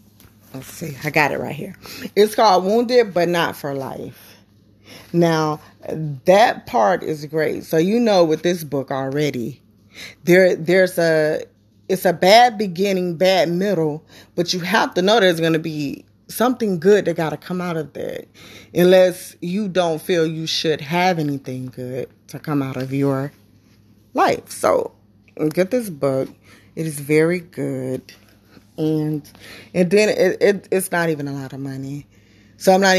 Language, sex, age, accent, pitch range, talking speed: English, female, 20-39, American, 135-180 Hz, 165 wpm